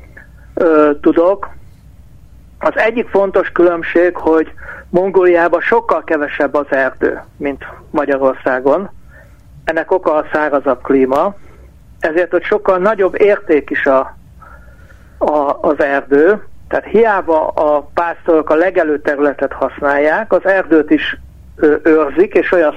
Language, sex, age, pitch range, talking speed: Hungarian, male, 60-79, 150-180 Hz, 110 wpm